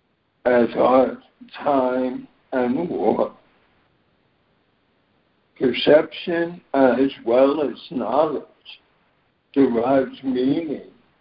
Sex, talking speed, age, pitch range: male, 65 wpm, 60-79, 130-170 Hz